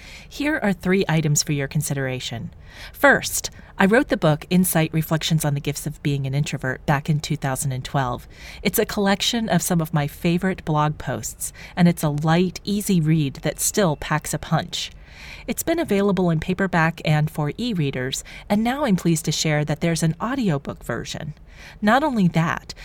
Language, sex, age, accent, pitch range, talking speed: English, female, 40-59, American, 150-190 Hz, 175 wpm